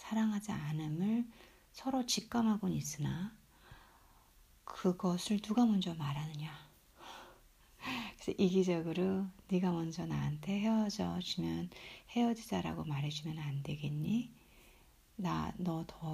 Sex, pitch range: female, 160-205 Hz